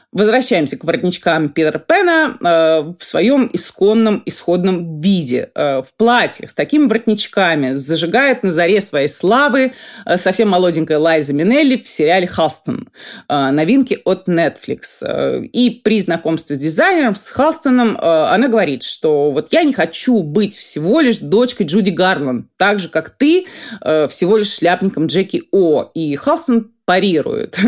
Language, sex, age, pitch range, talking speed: Russian, female, 20-39, 165-240 Hz, 135 wpm